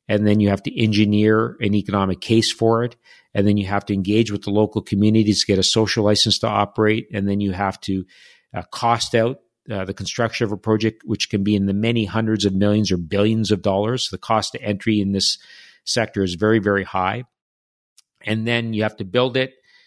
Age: 50-69